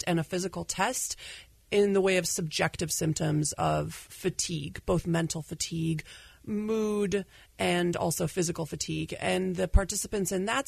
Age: 30-49